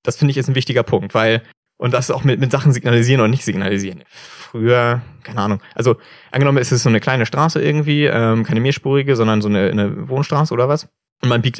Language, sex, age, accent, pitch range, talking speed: German, male, 20-39, German, 110-145 Hz, 220 wpm